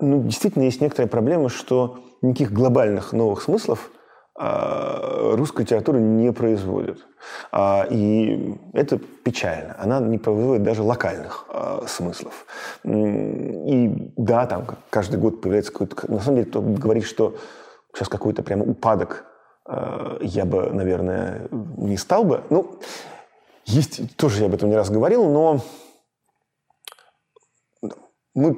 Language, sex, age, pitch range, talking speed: Russian, male, 20-39, 100-125 Hz, 120 wpm